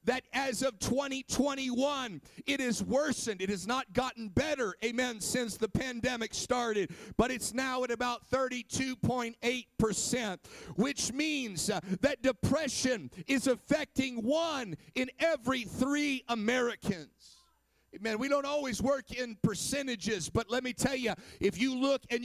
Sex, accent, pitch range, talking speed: male, American, 235-280 Hz, 135 wpm